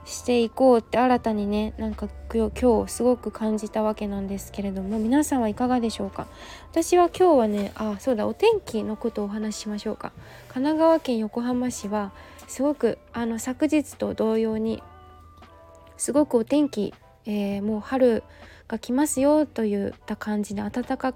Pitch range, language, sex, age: 205-265 Hz, Japanese, female, 20-39